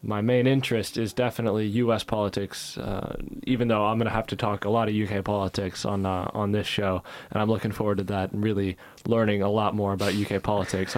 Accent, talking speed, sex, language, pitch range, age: American, 225 wpm, male, English, 100-115 Hz, 20-39